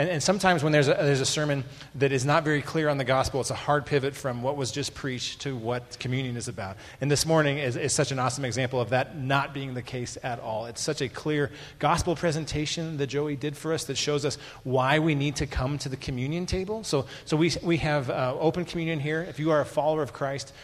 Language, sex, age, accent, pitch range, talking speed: English, male, 30-49, American, 120-145 Hz, 255 wpm